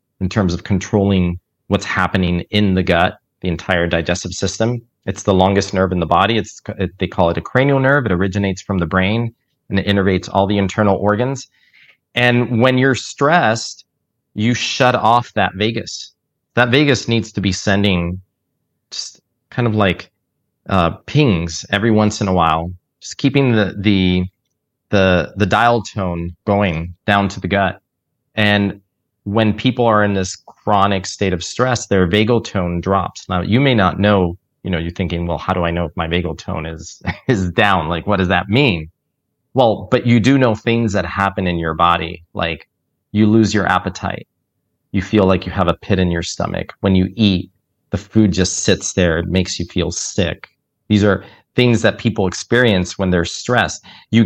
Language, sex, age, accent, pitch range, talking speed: English, male, 30-49, American, 90-110 Hz, 185 wpm